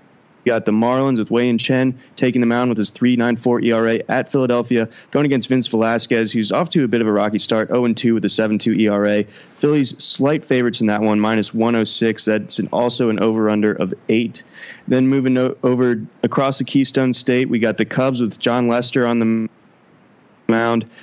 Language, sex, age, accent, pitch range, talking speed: English, male, 20-39, American, 105-125 Hz, 205 wpm